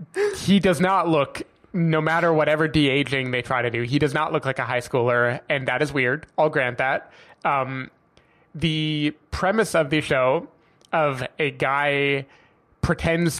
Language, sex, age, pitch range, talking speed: English, male, 20-39, 125-155 Hz, 165 wpm